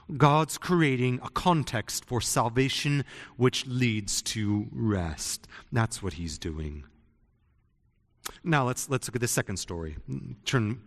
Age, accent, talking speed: 30-49, American, 125 wpm